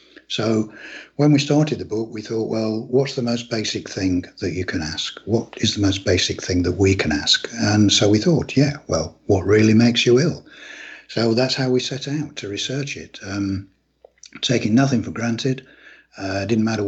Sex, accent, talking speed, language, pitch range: male, British, 200 wpm, English, 100-120 Hz